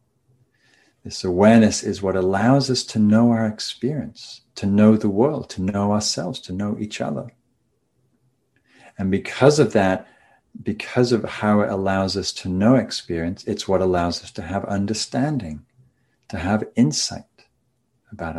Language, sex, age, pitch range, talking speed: English, male, 40-59, 95-120 Hz, 145 wpm